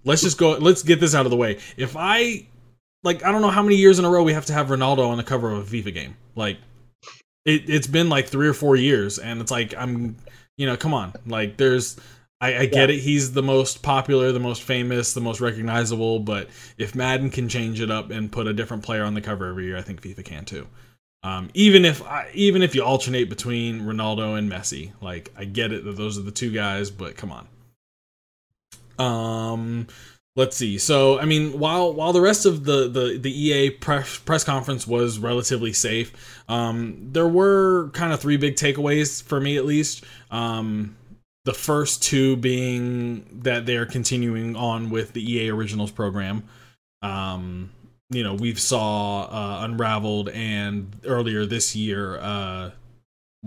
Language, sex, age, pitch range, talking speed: English, male, 20-39, 105-135 Hz, 200 wpm